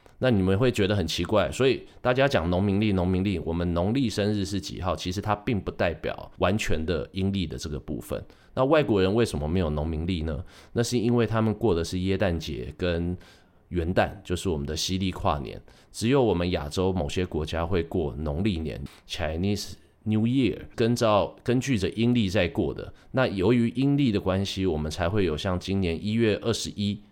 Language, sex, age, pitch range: Chinese, male, 30-49, 80-105 Hz